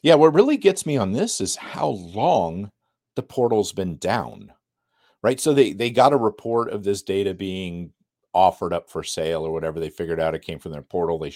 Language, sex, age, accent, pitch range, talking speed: English, male, 40-59, American, 80-120 Hz, 210 wpm